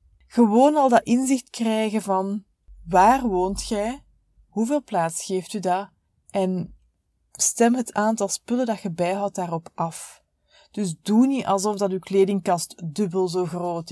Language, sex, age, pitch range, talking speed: Dutch, female, 20-39, 190-250 Hz, 145 wpm